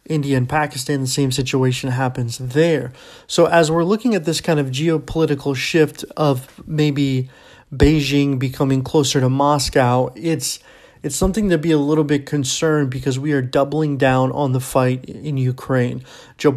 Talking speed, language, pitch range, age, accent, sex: 165 wpm, English, 135-155 Hz, 30-49, American, male